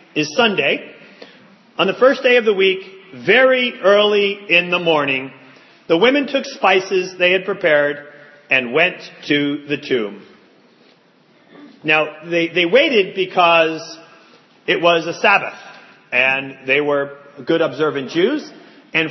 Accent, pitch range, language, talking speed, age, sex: American, 150-205 Hz, English, 130 wpm, 40-59, male